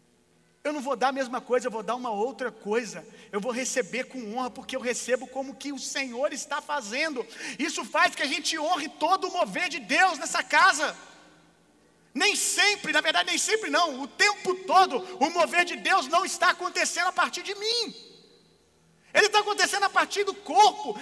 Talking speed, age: 195 wpm, 40-59